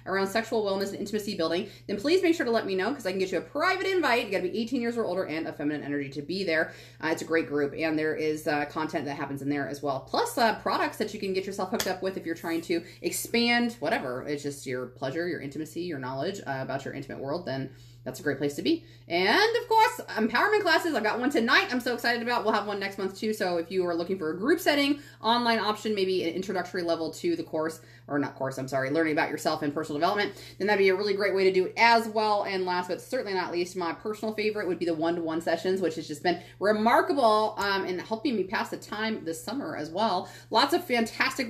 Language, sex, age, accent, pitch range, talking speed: English, female, 30-49, American, 160-225 Hz, 265 wpm